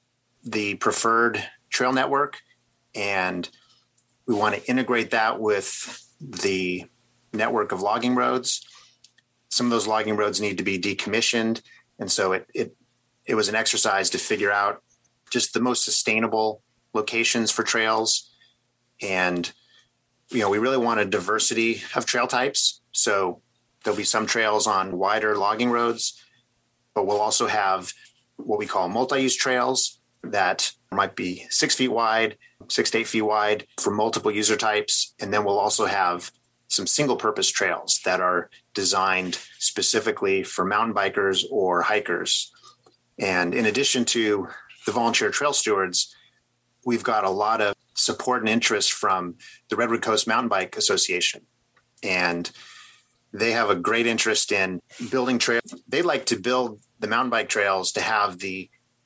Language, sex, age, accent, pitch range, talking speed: English, male, 30-49, American, 100-120 Hz, 150 wpm